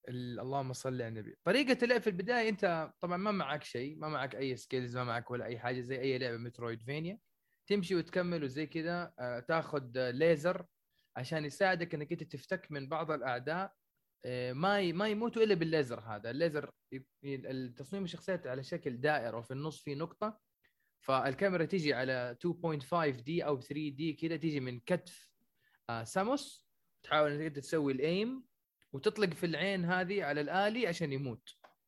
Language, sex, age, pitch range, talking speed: Arabic, male, 20-39, 135-180 Hz, 160 wpm